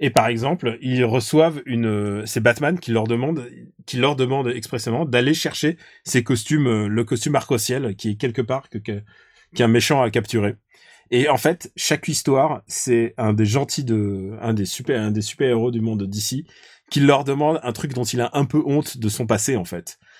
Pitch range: 115-145 Hz